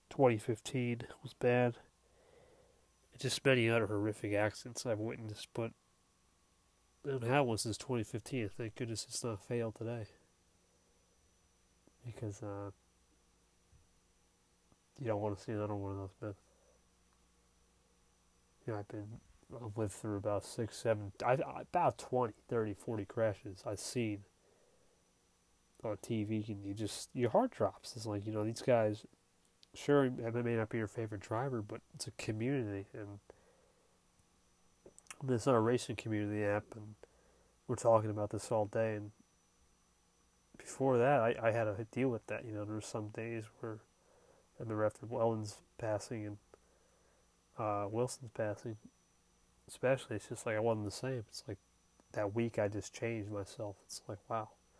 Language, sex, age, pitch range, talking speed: English, male, 20-39, 100-120 Hz, 150 wpm